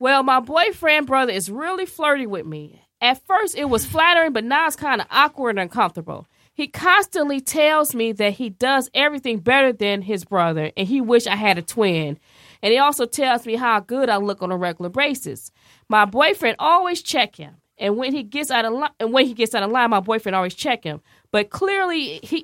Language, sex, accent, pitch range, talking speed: English, female, American, 200-270 Hz, 215 wpm